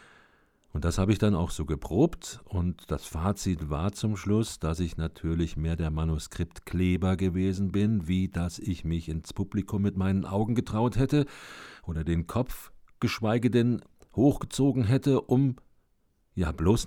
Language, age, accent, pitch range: German, 50-69, German, 80-100 Hz